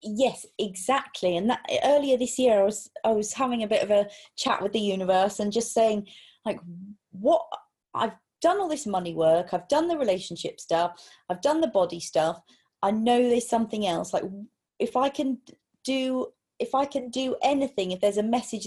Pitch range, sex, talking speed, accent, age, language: 185-240 Hz, female, 195 wpm, British, 30-49, English